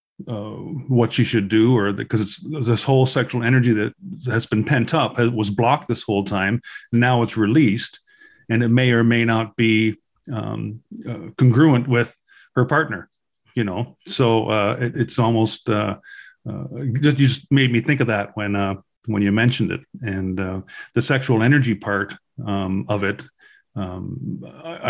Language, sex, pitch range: English, male, 110-130 Hz